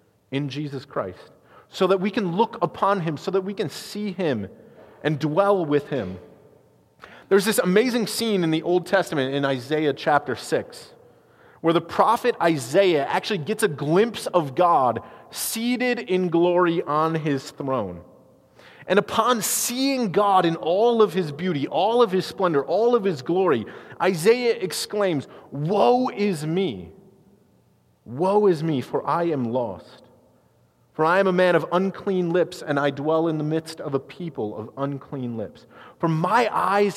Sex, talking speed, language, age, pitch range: male, 160 wpm, English, 30-49, 160-215 Hz